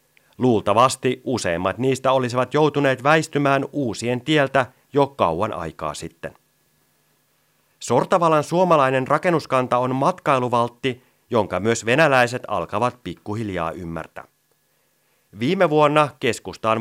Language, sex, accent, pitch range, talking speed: Finnish, male, native, 110-135 Hz, 95 wpm